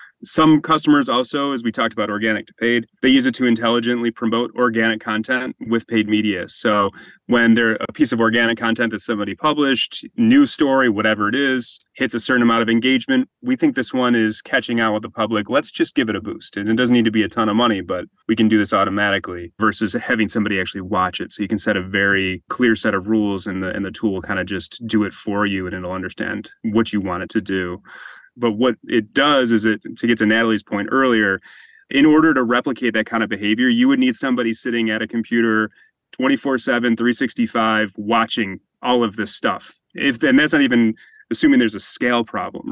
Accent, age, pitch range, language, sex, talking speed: American, 30-49, 110-125 Hz, English, male, 220 wpm